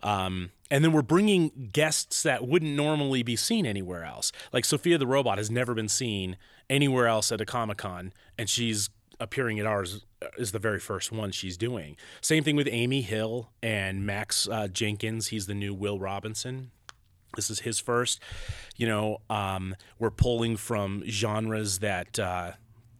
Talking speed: 170 wpm